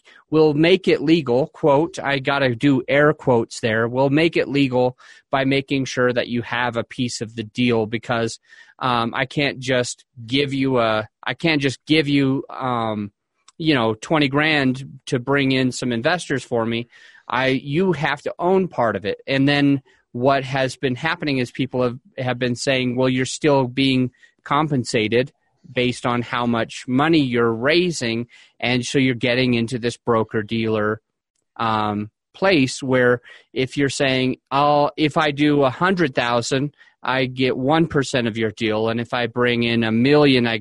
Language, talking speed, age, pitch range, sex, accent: English, 165 wpm, 30-49, 120-145 Hz, male, American